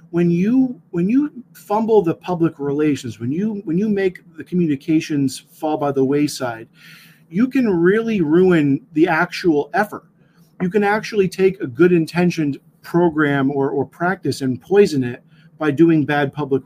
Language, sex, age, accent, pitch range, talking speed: English, male, 40-59, American, 140-175 Hz, 160 wpm